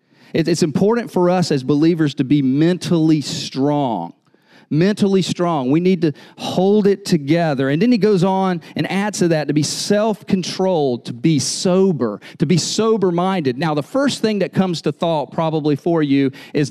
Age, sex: 40-59, male